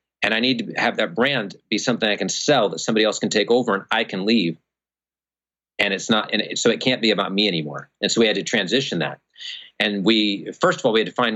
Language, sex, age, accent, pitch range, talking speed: English, male, 40-59, American, 100-125 Hz, 255 wpm